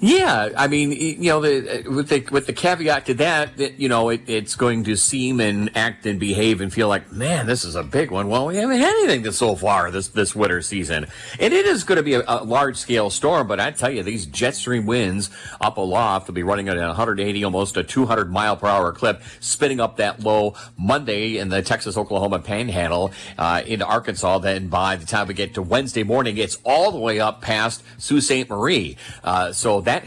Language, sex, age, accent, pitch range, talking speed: English, male, 40-59, American, 100-130 Hz, 230 wpm